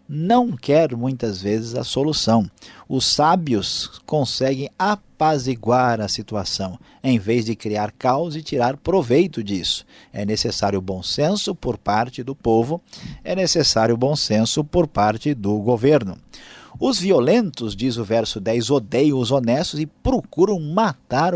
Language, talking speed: Portuguese, 140 wpm